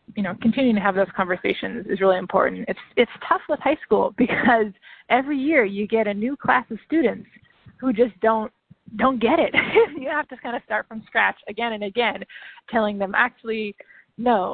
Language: English